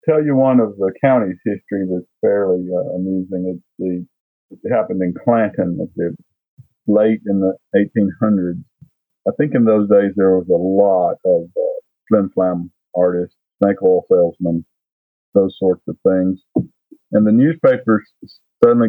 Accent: American